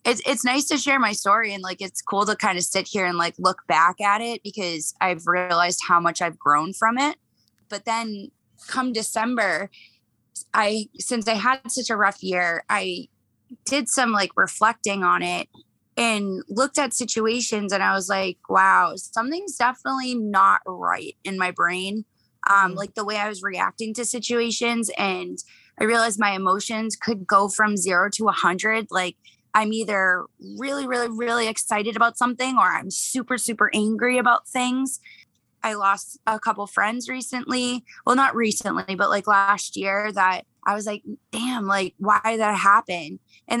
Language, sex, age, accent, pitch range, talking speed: English, female, 20-39, American, 190-235 Hz, 170 wpm